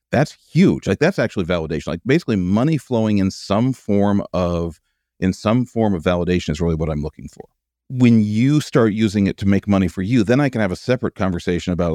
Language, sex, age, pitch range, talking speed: English, male, 40-59, 85-105 Hz, 215 wpm